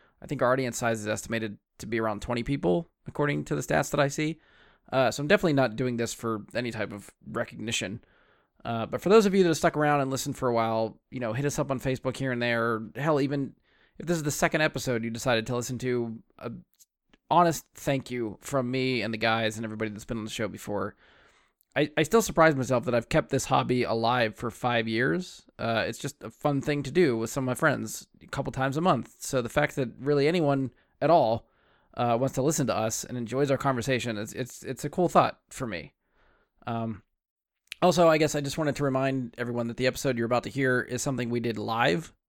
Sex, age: male, 20-39